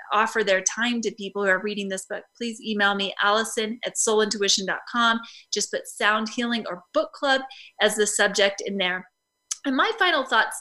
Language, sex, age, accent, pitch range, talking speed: English, female, 30-49, American, 200-240 Hz, 180 wpm